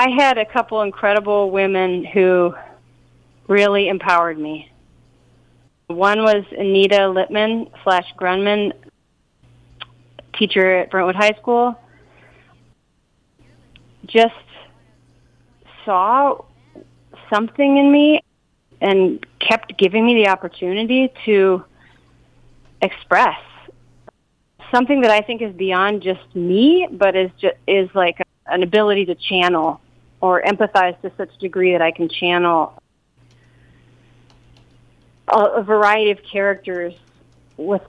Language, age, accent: English, 30-49, American